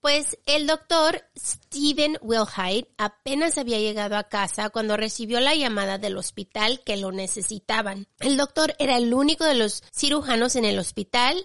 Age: 30-49